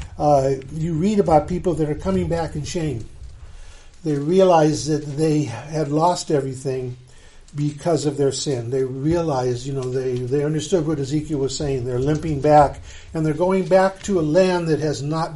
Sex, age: male, 50-69